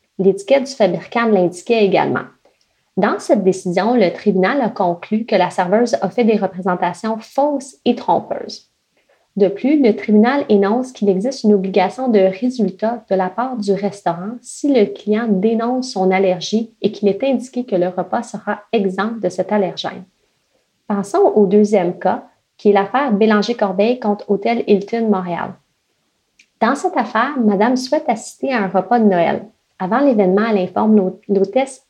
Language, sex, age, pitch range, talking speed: French, female, 30-49, 190-235 Hz, 160 wpm